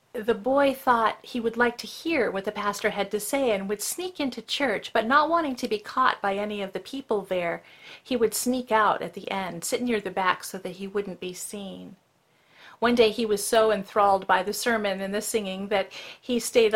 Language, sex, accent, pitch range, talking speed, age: English, female, American, 200-240 Hz, 225 wpm, 40-59